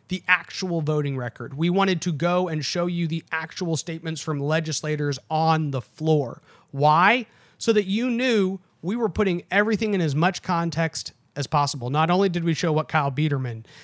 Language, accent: English, American